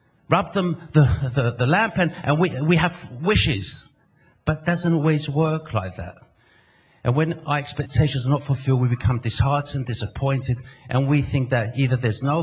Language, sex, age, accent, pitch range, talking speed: English, male, 50-69, British, 115-160 Hz, 180 wpm